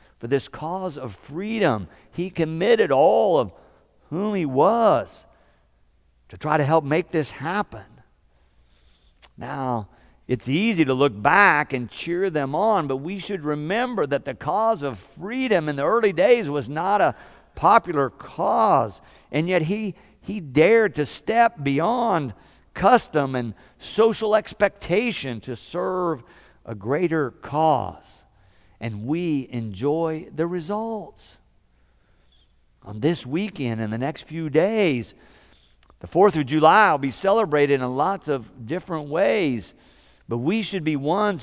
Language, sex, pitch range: English, male, 115-175 Hz